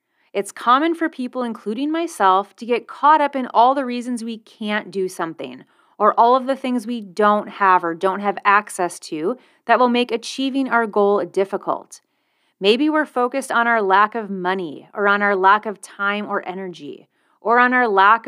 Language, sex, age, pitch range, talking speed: English, female, 30-49, 195-250 Hz, 190 wpm